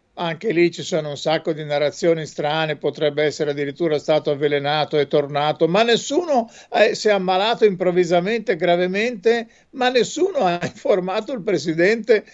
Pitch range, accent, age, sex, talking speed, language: 165-235 Hz, native, 50-69, male, 140 wpm, Italian